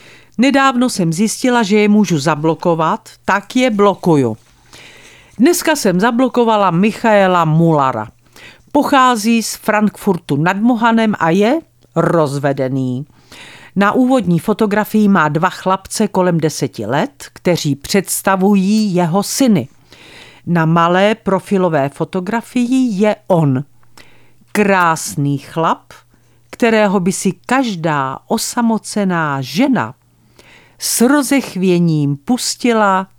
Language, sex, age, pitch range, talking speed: Czech, female, 50-69, 160-235 Hz, 95 wpm